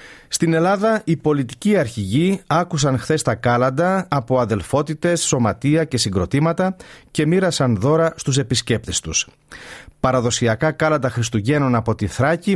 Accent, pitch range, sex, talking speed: native, 120-165 Hz, male, 125 wpm